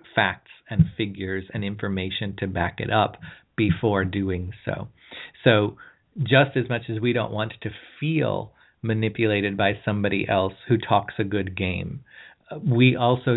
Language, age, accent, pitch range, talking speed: English, 40-59, American, 100-115 Hz, 150 wpm